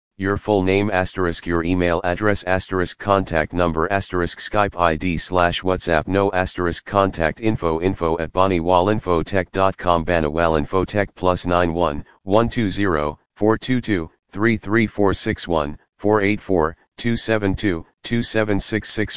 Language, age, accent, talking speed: English, 40-59, American, 90 wpm